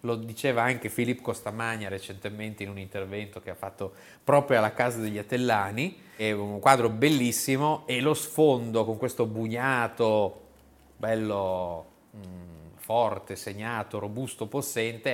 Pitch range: 105-140 Hz